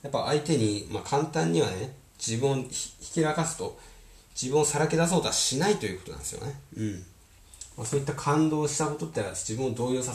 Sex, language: male, Japanese